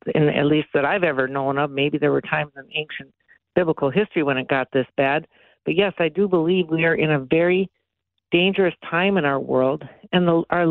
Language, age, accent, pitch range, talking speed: English, 50-69, American, 150-185 Hz, 205 wpm